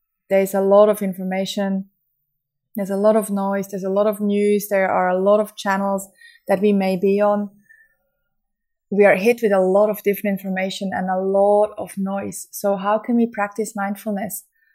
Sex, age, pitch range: female, 20-39, 195-220 Hz